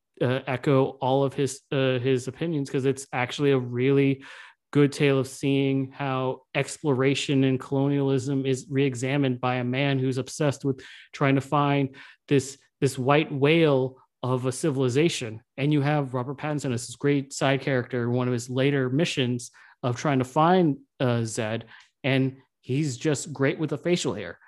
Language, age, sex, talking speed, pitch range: English, 30-49, male, 165 wpm, 125-145 Hz